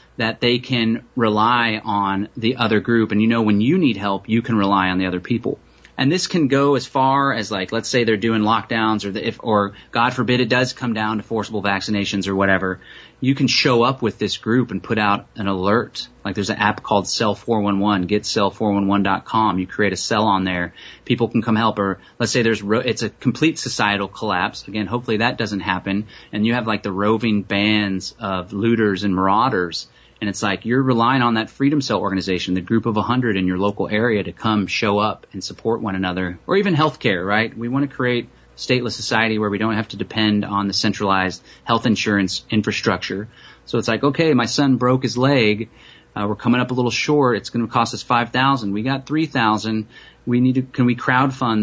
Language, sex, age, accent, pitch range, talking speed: English, male, 30-49, American, 100-125 Hz, 215 wpm